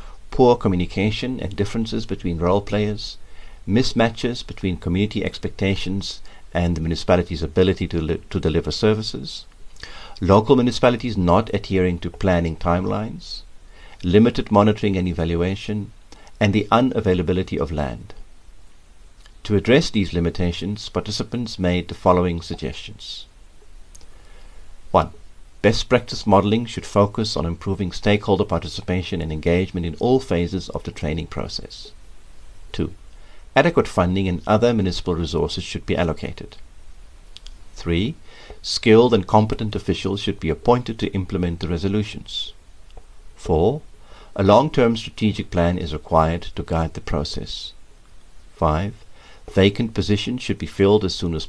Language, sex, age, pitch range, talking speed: English, male, 50-69, 85-105 Hz, 120 wpm